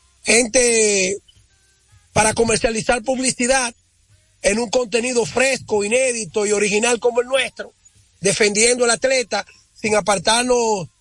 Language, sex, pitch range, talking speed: Spanish, male, 185-245 Hz, 105 wpm